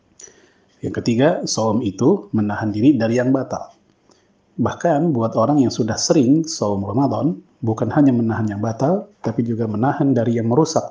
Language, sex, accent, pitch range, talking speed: Indonesian, male, native, 110-140 Hz, 155 wpm